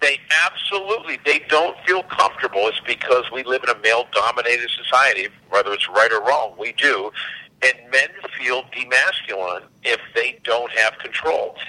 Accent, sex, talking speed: American, male, 155 wpm